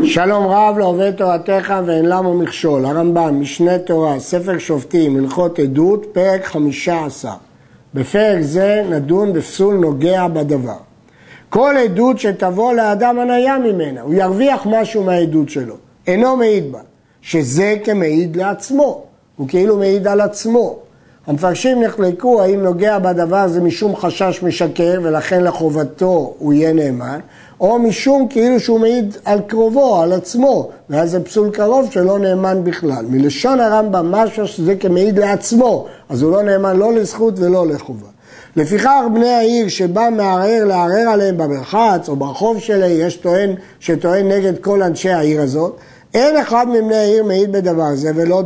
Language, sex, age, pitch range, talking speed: Hebrew, male, 50-69, 160-215 Hz, 140 wpm